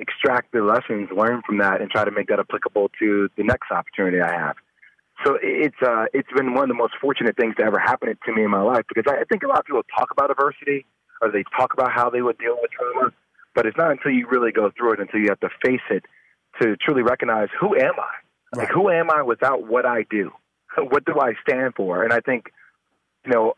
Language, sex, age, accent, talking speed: English, male, 30-49, American, 245 wpm